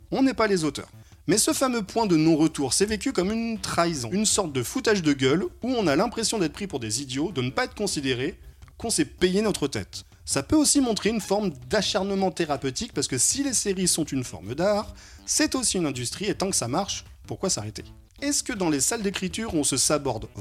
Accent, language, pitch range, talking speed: French, French, 130-205 Hz, 230 wpm